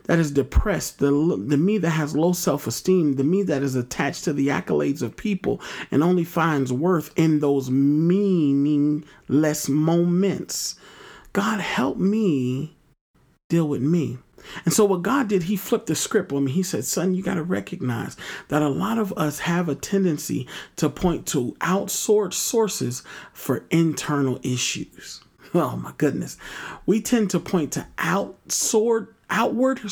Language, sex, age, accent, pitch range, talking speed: English, male, 40-59, American, 140-185 Hz, 155 wpm